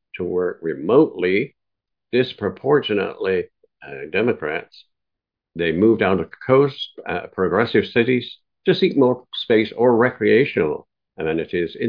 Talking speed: 115 wpm